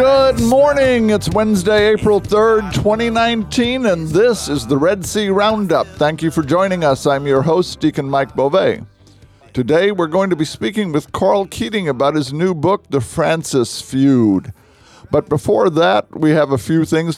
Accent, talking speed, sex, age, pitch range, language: American, 170 wpm, male, 50-69, 130-180 Hz, English